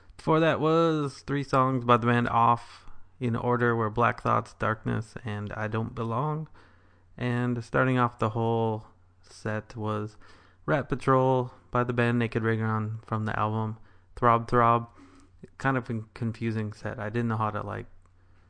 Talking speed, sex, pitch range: 160 wpm, male, 100-120 Hz